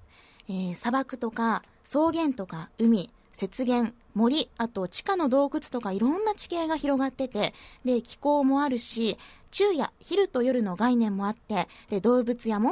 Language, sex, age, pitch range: Japanese, female, 20-39, 215-310 Hz